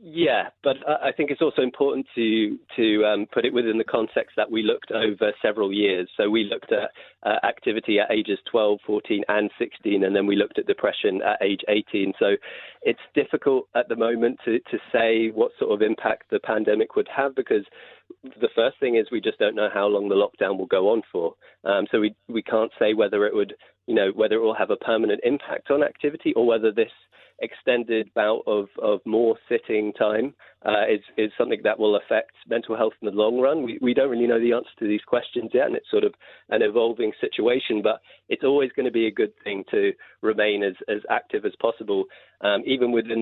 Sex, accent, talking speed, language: male, British, 215 wpm, English